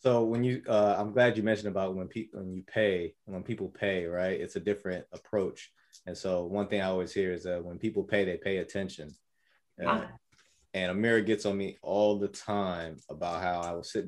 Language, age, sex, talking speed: English, 20-39, male, 215 wpm